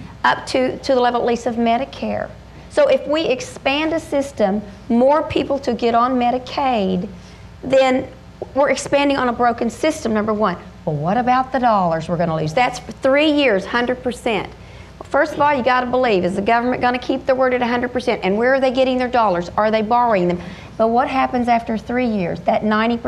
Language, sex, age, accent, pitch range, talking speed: English, female, 40-59, American, 220-275 Hz, 200 wpm